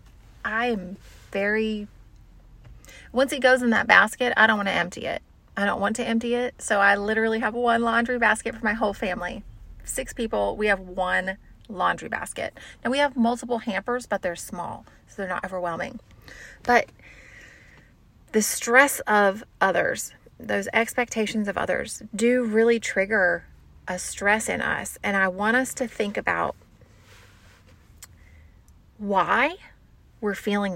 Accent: American